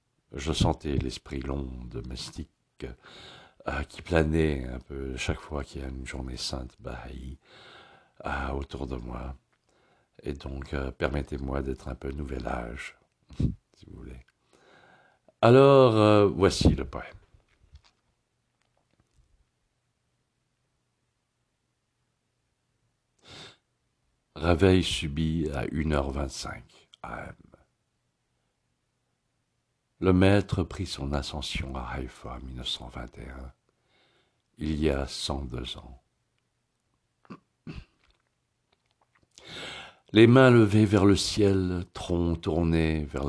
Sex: male